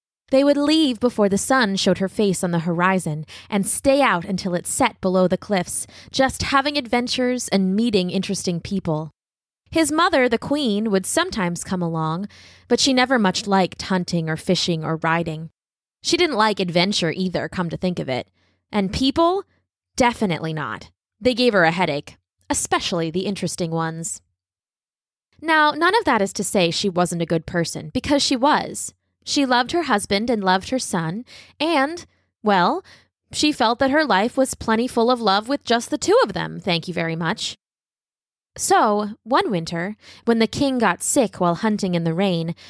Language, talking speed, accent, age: English, 180 wpm, American, 20-39